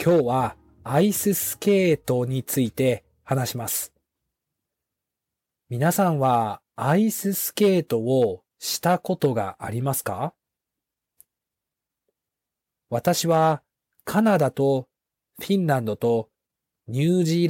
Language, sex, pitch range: Japanese, male, 120-180 Hz